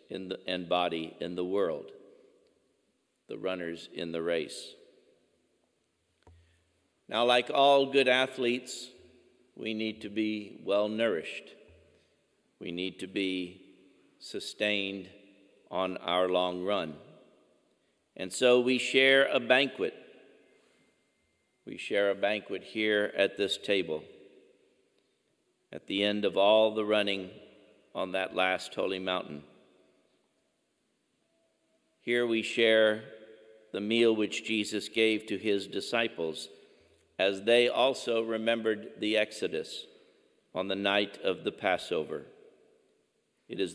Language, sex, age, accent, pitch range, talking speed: English, male, 50-69, American, 95-115 Hz, 110 wpm